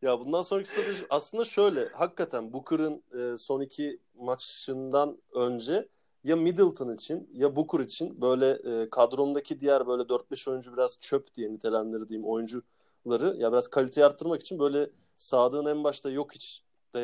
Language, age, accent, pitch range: Turkish, 30-49, native, 125-160 Hz